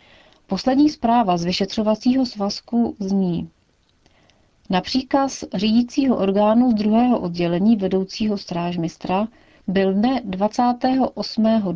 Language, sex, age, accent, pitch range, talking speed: Czech, female, 40-59, native, 180-225 Hz, 85 wpm